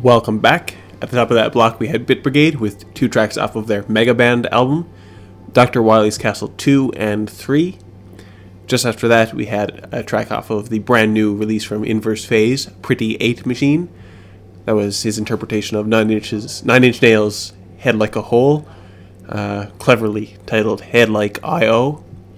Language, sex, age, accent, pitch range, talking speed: English, male, 20-39, American, 105-120 Hz, 175 wpm